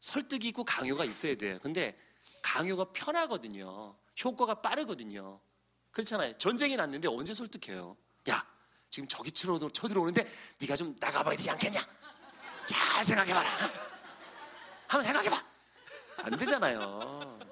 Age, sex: 40-59, male